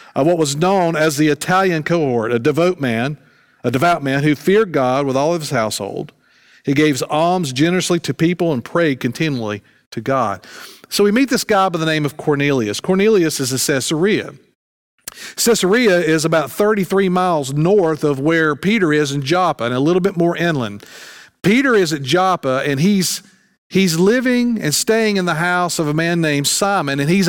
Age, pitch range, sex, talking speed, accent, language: 50-69, 150-190 Hz, male, 185 wpm, American, English